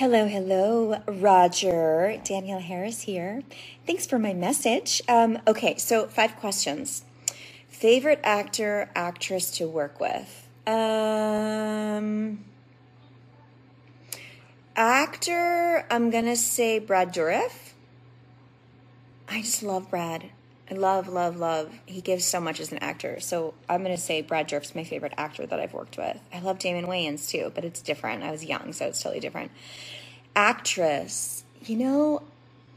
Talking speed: 135 wpm